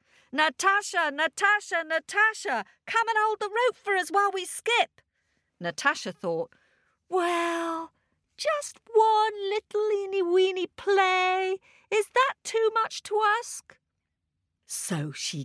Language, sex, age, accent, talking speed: English, female, 50-69, British, 115 wpm